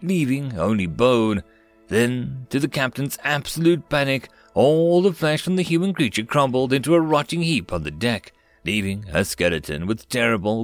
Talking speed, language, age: 165 wpm, English, 40-59